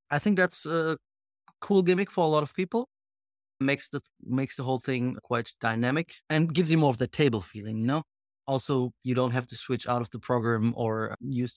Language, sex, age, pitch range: English, male, 30-49, 120-150 Hz